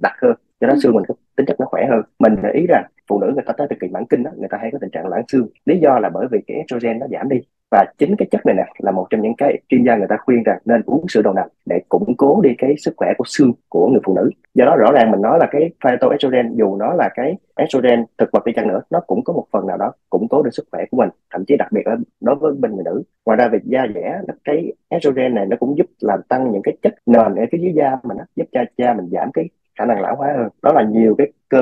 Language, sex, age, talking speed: Vietnamese, male, 30-49, 305 wpm